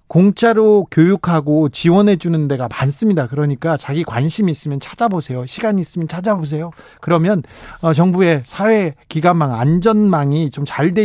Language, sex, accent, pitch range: Korean, male, native, 135-195 Hz